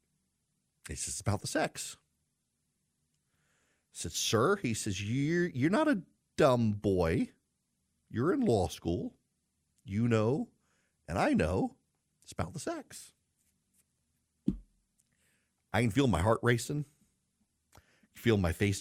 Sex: male